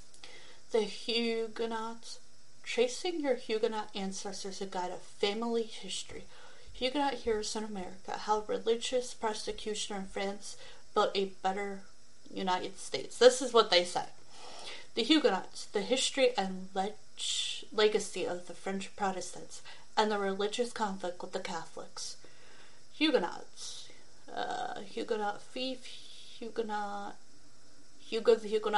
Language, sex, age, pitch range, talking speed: English, female, 30-49, 195-270 Hz, 110 wpm